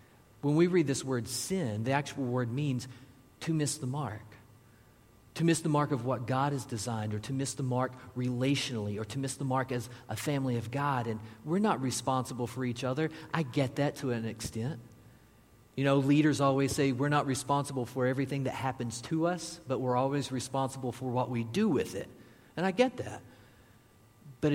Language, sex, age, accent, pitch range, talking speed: English, male, 40-59, American, 115-145 Hz, 200 wpm